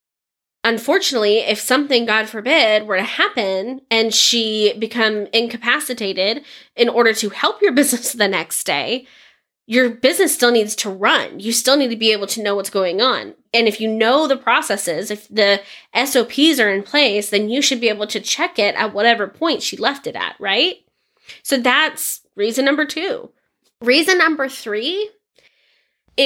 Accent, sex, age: American, female, 20-39